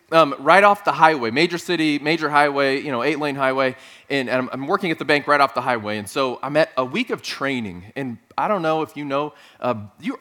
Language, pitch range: English, 125-155 Hz